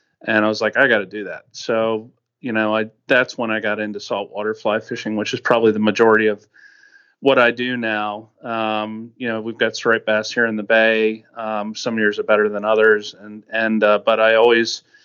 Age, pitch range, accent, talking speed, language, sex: 40-59, 110-130 Hz, American, 220 wpm, English, male